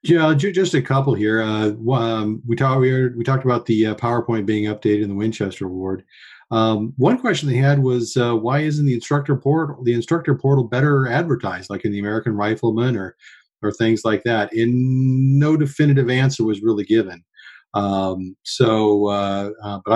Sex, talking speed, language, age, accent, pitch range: male, 175 wpm, English, 40-59, American, 100-120 Hz